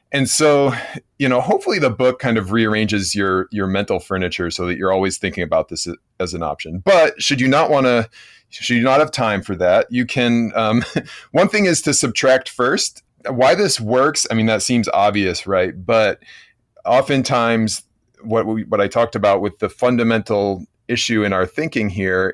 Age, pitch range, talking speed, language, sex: 30-49, 100-125 Hz, 190 wpm, English, male